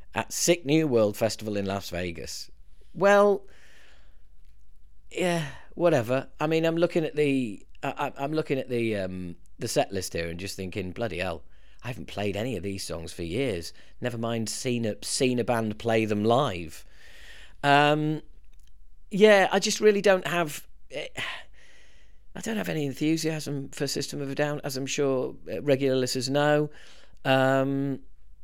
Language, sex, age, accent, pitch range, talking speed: English, male, 40-59, British, 95-145 Hz, 160 wpm